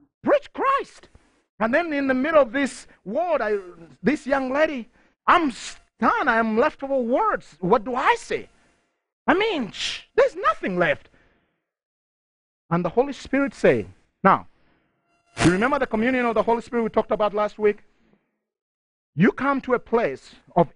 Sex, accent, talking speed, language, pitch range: male, Nigerian, 155 wpm, English, 195-295 Hz